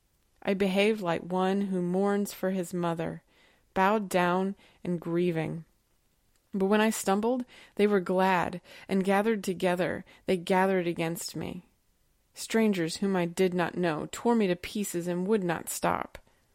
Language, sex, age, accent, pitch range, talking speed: English, female, 20-39, American, 175-205 Hz, 150 wpm